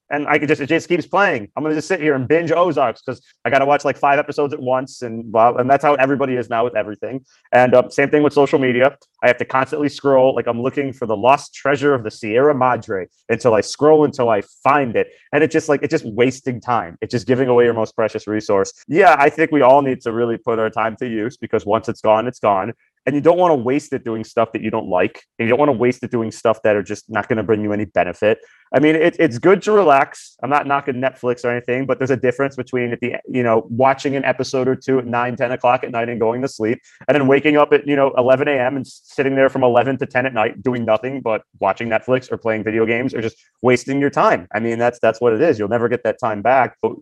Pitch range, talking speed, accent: 115-140 Hz, 275 wpm, American